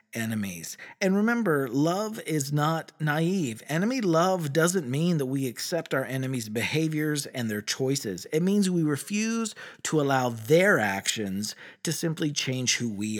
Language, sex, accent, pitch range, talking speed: English, male, American, 115-165 Hz, 150 wpm